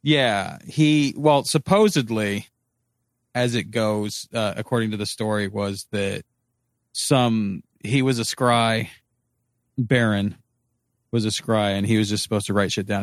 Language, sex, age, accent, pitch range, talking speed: English, male, 40-59, American, 100-120 Hz, 145 wpm